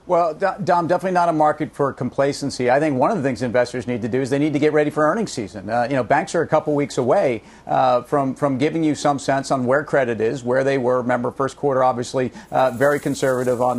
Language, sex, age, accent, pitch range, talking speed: English, male, 50-69, American, 130-160 Hz, 250 wpm